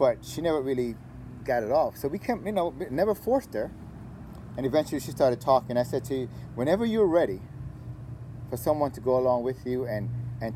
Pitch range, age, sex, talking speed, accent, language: 110-130 Hz, 30-49, male, 205 wpm, American, English